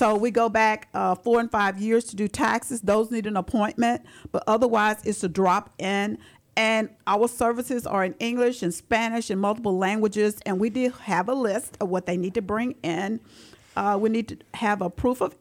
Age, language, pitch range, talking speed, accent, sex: 50-69, English, 195-235 Hz, 210 wpm, American, female